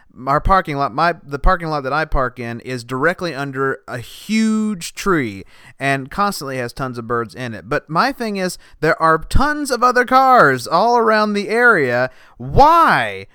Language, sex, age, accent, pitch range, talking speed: English, male, 30-49, American, 140-210 Hz, 180 wpm